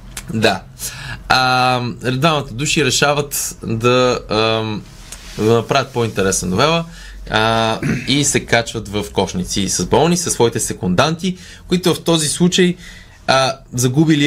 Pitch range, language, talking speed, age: 105-155 Hz, Bulgarian, 115 wpm, 20-39